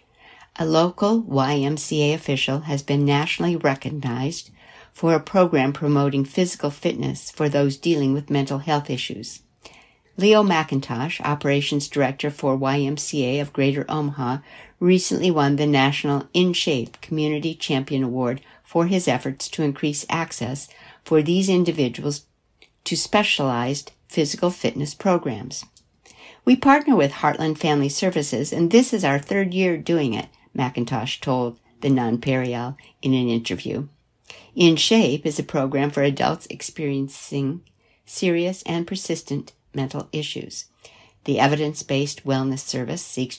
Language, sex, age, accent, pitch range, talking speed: English, female, 60-79, American, 135-165 Hz, 125 wpm